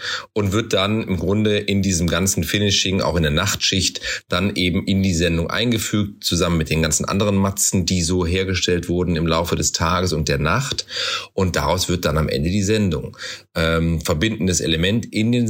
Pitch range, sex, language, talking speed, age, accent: 85-100 Hz, male, German, 190 wpm, 40-59, German